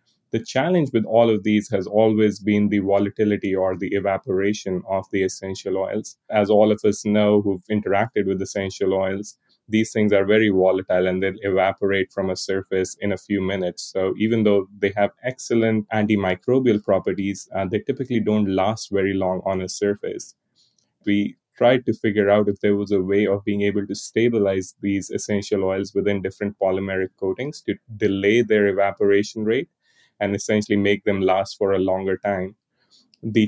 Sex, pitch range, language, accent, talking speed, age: male, 95-105 Hz, English, Indian, 175 wpm, 20-39